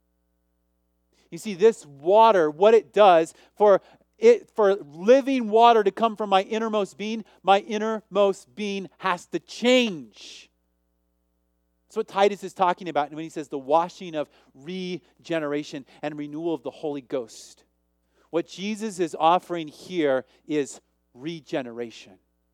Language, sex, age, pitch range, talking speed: English, male, 40-59, 115-185 Hz, 130 wpm